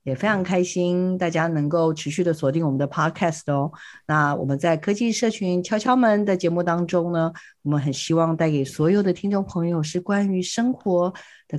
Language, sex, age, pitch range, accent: Chinese, female, 50-69, 160-200 Hz, native